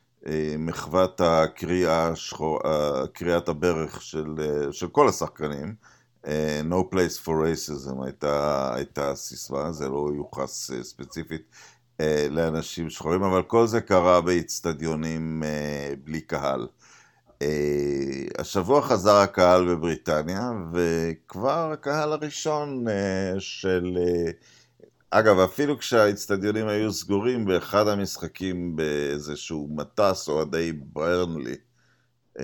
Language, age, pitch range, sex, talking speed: Hebrew, 50-69, 75-95 Hz, male, 90 wpm